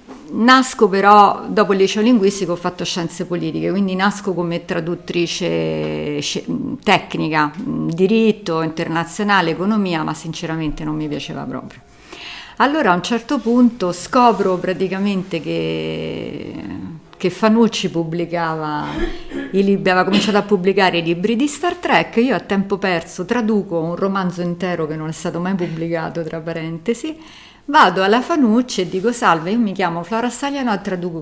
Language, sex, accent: Italian, female, native